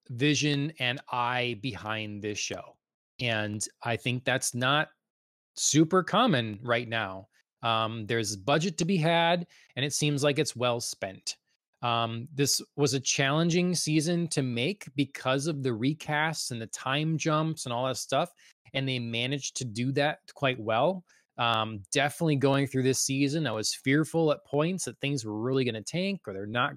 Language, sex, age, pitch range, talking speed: English, male, 20-39, 120-150 Hz, 175 wpm